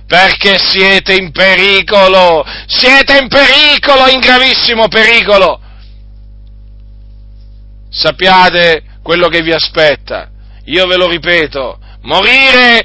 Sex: male